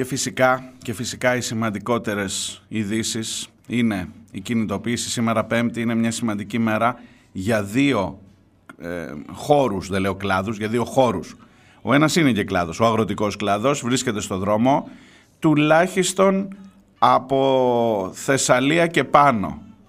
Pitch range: 105-140 Hz